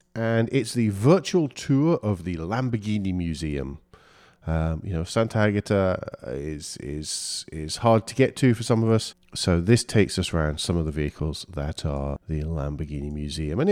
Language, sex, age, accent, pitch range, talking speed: English, male, 40-59, British, 80-115 Hz, 175 wpm